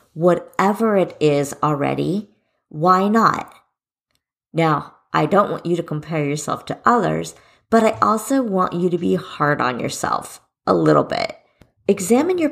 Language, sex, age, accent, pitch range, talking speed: English, female, 40-59, American, 155-235 Hz, 150 wpm